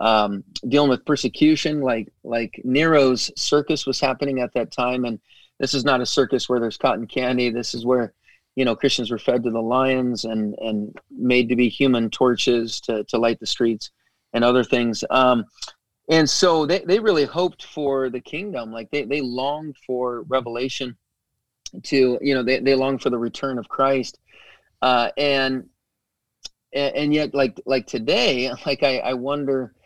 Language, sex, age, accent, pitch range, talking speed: English, male, 30-49, American, 120-135 Hz, 175 wpm